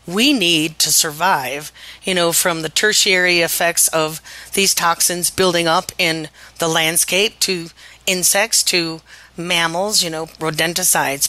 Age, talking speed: 40-59, 135 wpm